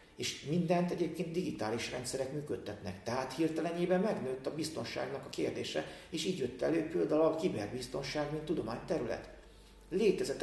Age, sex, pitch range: 40-59, male, 120-160 Hz